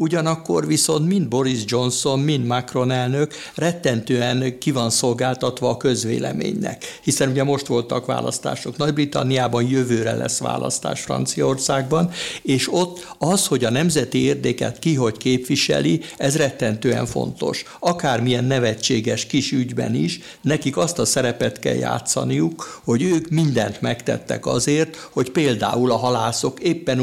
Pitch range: 115-145 Hz